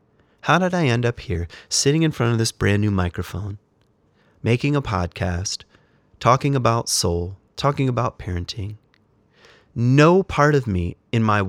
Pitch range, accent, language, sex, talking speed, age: 105-130 Hz, American, English, male, 150 wpm, 30-49